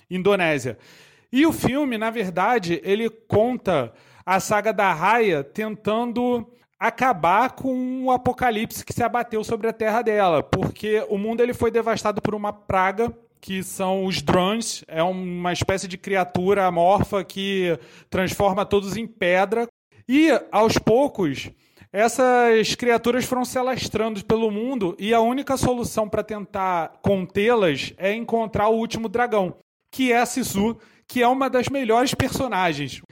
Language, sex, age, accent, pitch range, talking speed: Portuguese, male, 30-49, Brazilian, 190-235 Hz, 145 wpm